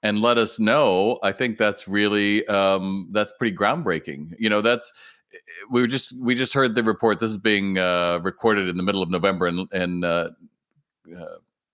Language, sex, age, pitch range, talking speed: English, male, 50-69, 95-120 Hz, 190 wpm